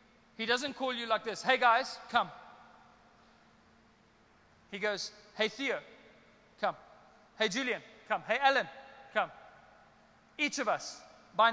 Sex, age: male, 20-39